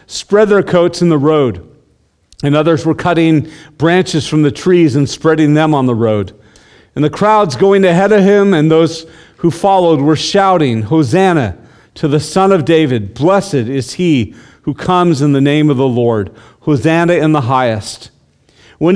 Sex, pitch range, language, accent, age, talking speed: male, 120-175 Hz, English, American, 40-59, 175 wpm